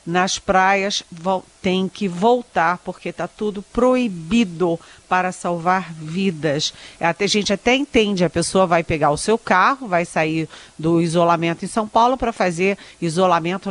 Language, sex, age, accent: Portuguese, female, 40-59, Brazilian